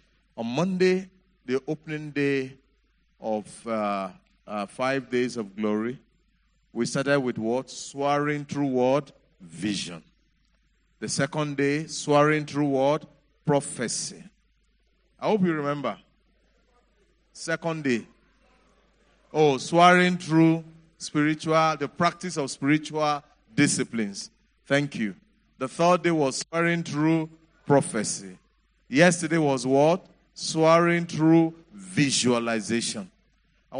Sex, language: male, English